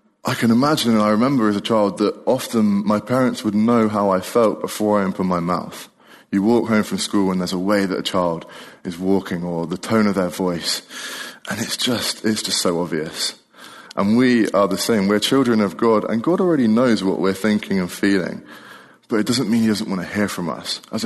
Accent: British